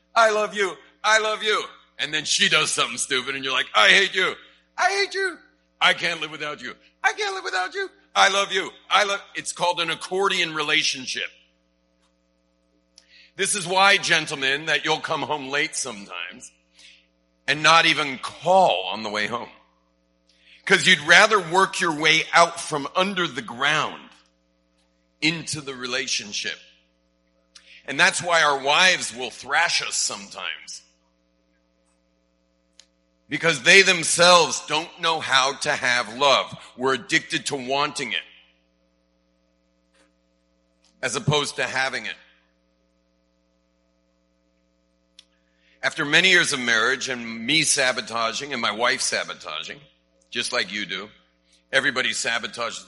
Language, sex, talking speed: English, male, 135 wpm